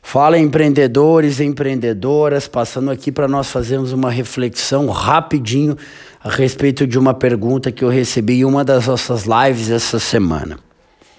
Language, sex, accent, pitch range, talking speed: Portuguese, male, Brazilian, 130-165 Hz, 145 wpm